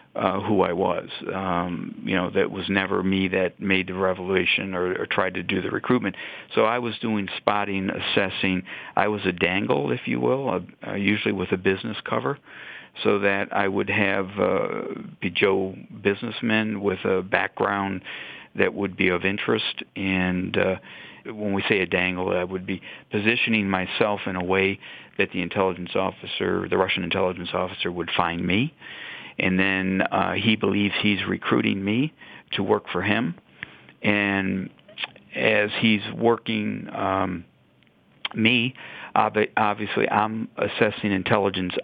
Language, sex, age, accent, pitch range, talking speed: English, male, 50-69, American, 95-105 Hz, 155 wpm